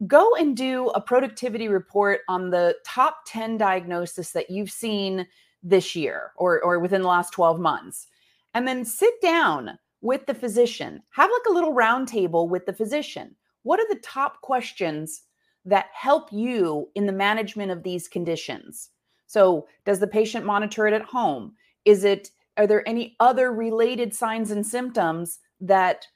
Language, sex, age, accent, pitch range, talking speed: English, female, 30-49, American, 190-260 Hz, 165 wpm